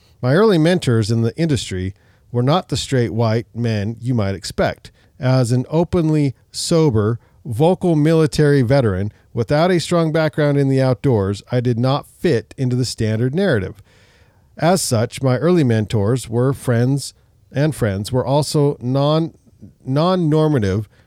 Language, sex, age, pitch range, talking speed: English, male, 50-69, 110-145 Hz, 140 wpm